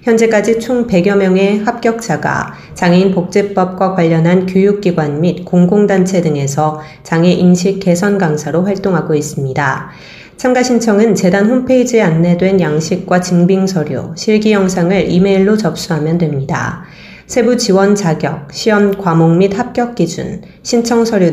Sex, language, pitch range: female, Korean, 165-205 Hz